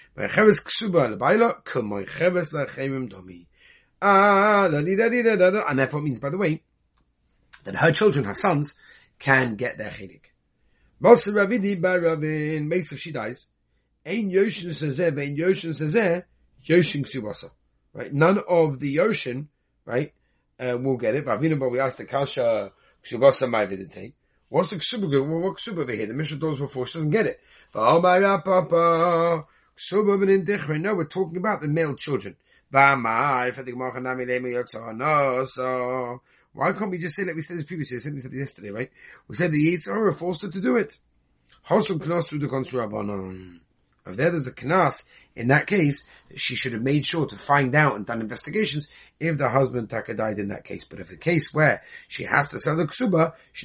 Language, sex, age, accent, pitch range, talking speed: English, male, 30-49, British, 125-175 Hz, 130 wpm